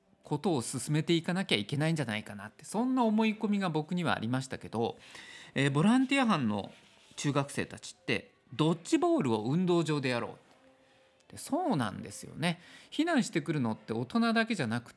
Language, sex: Japanese, male